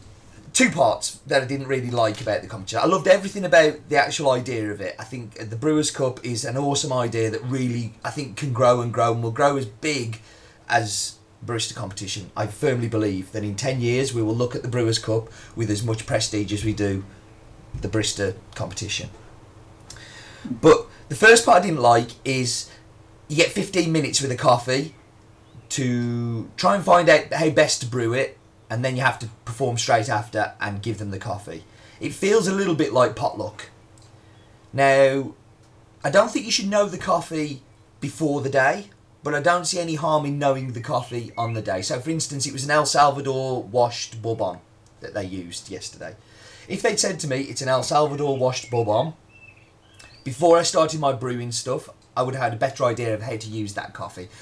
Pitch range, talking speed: 110-140 Hz, 200 wpm